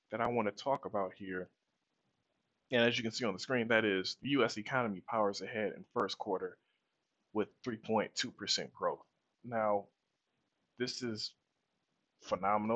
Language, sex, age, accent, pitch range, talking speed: English, male, 20-39, American, 105-130 Hz, 150 wpm